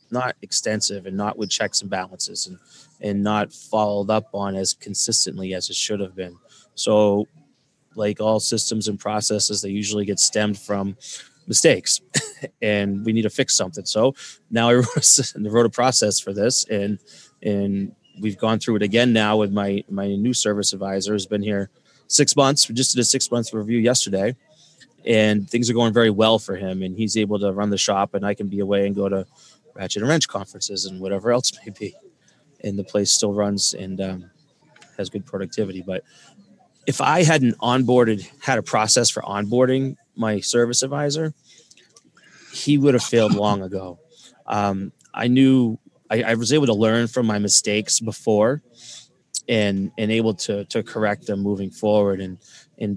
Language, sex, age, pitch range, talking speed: English, male, 20-39, 100-115 Hz, 180 wpm